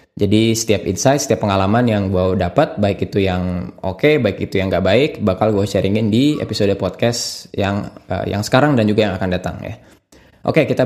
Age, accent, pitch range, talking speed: 10-29, native, 100-120 Hz, 205 wpm